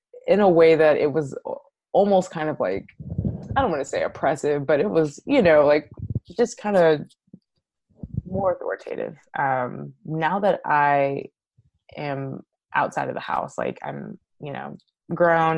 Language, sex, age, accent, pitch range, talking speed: English, female, 20-39, American, 135-160 Hz, 160 wpm